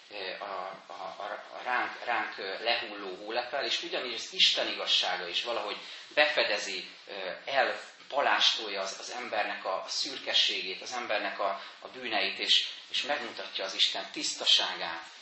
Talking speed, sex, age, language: 125 wpm, male, 30-49, Hungarian